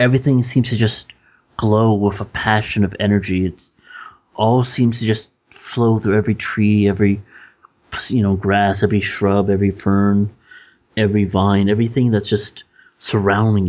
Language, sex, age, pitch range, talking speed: English, male, 30-49, 100-120 Hz, 145 wpm